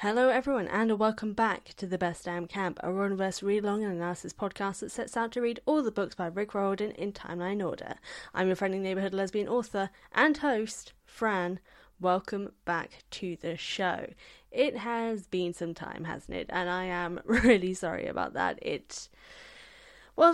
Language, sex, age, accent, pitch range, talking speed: English, female, 10-29, British, 180-220 Hz, 180 wpm